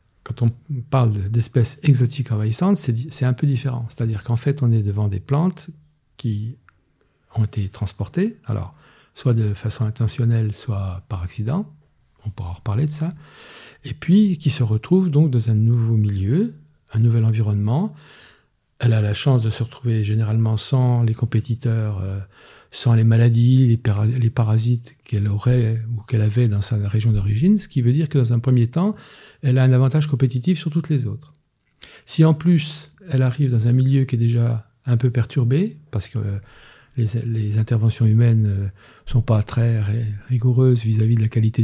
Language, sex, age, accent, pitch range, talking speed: French, male, 50-69, French, 110-140 Hz, 175 wpm